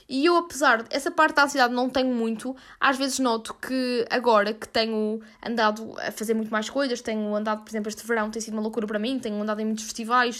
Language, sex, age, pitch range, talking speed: Portuguese, female, 10-29, 220-265 Hz, 235 wpm